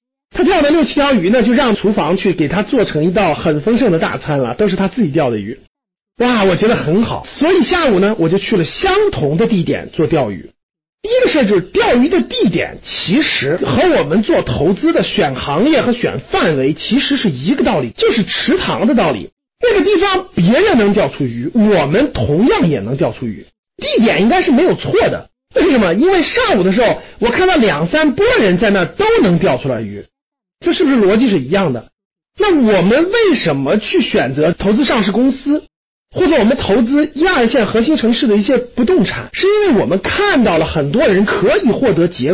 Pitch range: 185-295 Hz